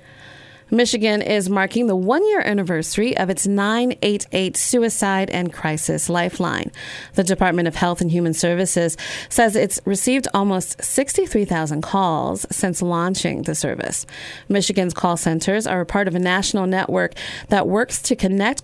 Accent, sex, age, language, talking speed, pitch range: American, female, 30-49, English, 140 wpm, 170-210 Hz